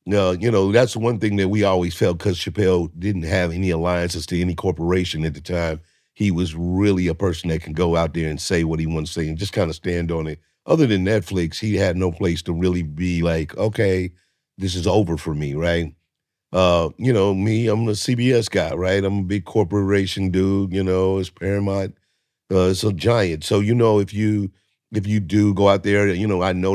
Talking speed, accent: 225 wpm, American